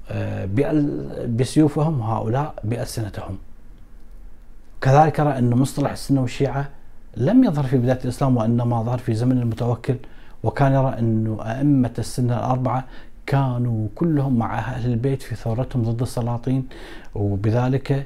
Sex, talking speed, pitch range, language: male, 115 wpm, 110-130 Hz, Arabic